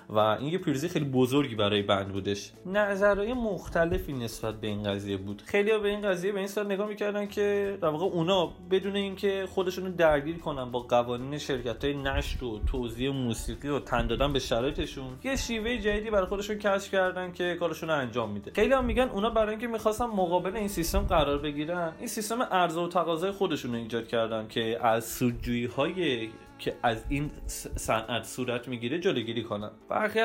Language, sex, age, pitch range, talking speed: Persian, male, 20-39, 125-190 Hz, 175 wpm